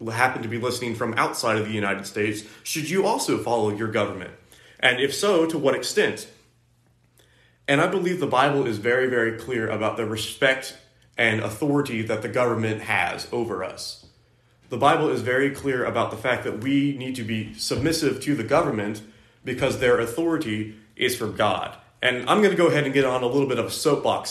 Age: 30-49